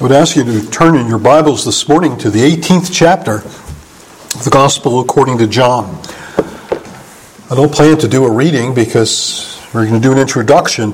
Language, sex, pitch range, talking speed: English, male, 110-150 Hz, 190 wpm